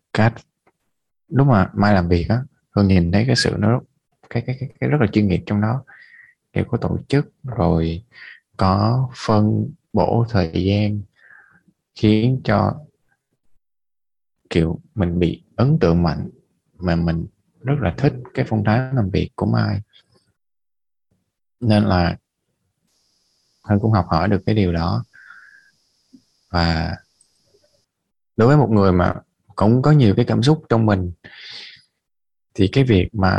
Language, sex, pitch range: Vietnamese, male, 95-120 Hz